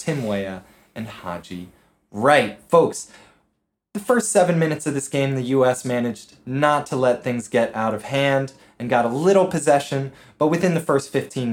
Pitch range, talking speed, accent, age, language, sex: 125-170 Hz, 175 wpm, American, 20-39, English, male